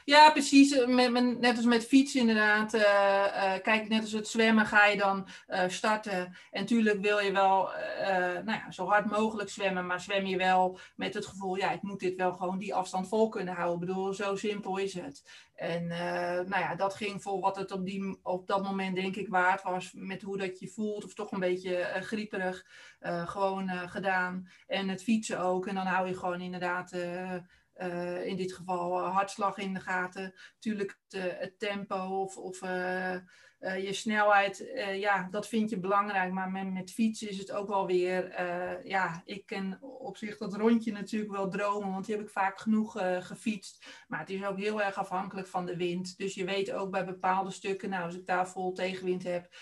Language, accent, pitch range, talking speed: Dutch, Dutch, 185-205 Hz, 210 wpm